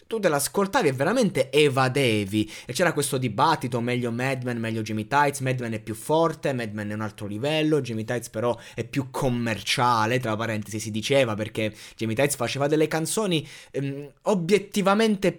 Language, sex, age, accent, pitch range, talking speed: Italian, male, 20-39, native, 125-180 Hz, 165 wpm